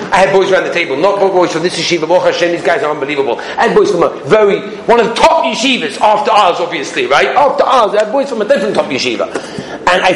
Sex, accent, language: male, British, English